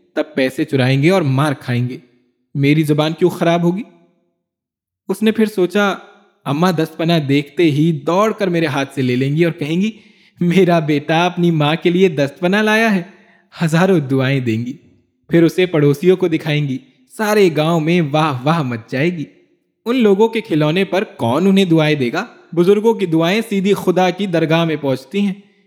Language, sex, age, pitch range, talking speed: Urdu, male, 20-39, 145-185 Hz, 185 wpm